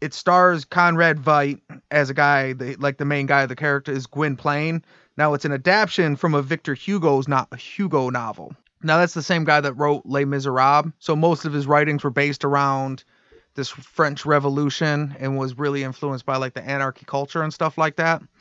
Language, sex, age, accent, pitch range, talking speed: English, male, 30-49, American, 140-165 Hz, 200 wpm